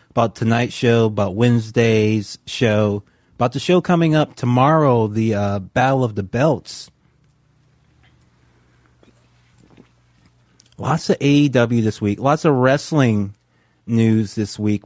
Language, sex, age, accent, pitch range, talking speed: English, male, 30-49, American, 100-130 Hz, 115 wpm